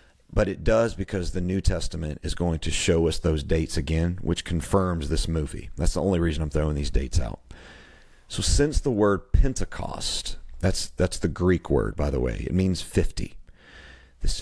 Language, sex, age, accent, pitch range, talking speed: English, male, 40-59, American, 75-95 Hz, 185 wpm